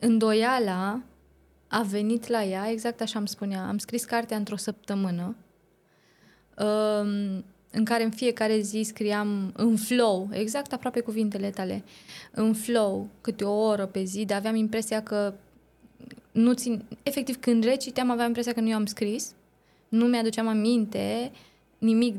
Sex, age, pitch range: female, 20-39, 205-235 Hz